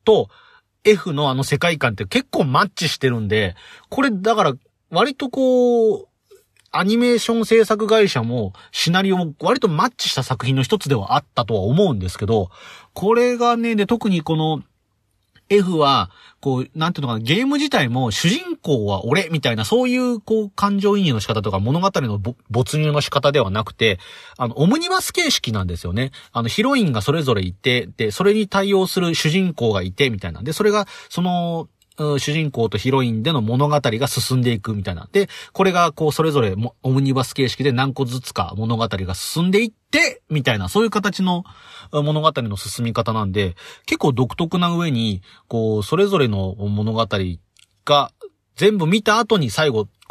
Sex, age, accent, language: male, 40-59, native, Japanese